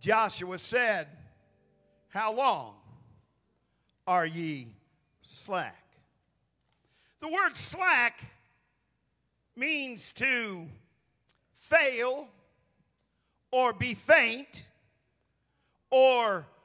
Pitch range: 200-290 Hz